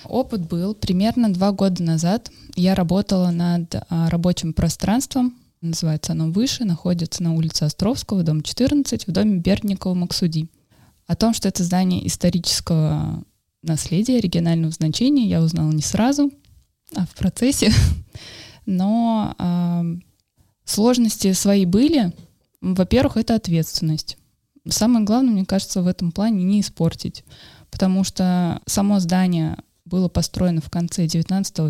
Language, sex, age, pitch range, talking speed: Russian, female, 20-39, 165-205 Hz, 125 wpm